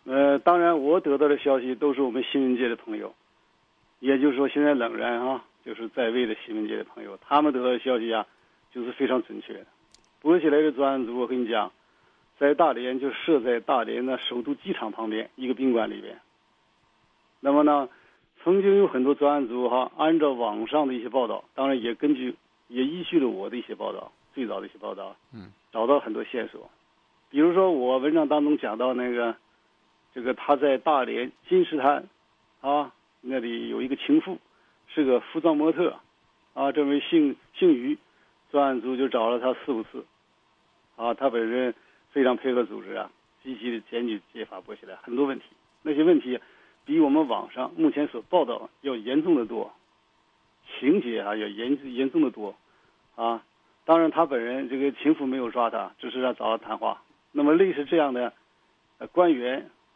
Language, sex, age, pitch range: English, male, 50-69, 120-155 Hz